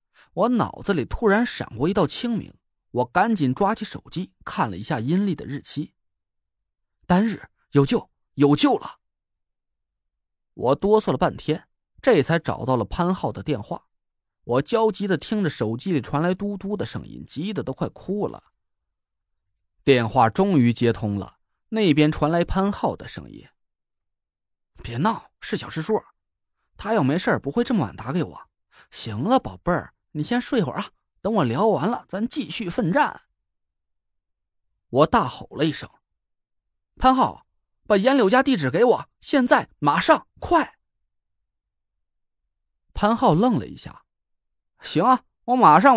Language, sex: Chinese, male